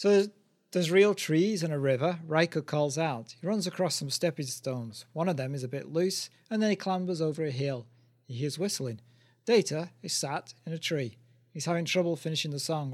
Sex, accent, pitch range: male, British, 130-170 Hz